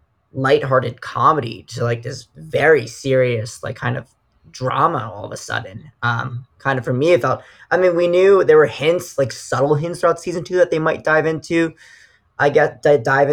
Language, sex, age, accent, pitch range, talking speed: English, male, 20-39, American, 120-145 Hz, 200 wpm